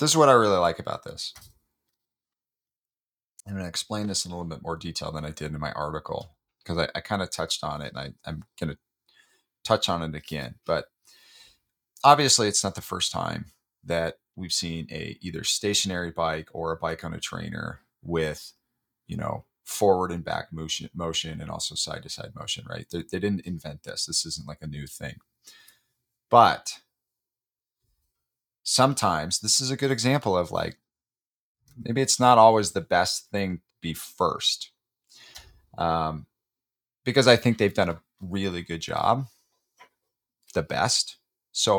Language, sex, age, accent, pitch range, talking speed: English, male, 30-49, American, 80-105 Hz, 170 wpm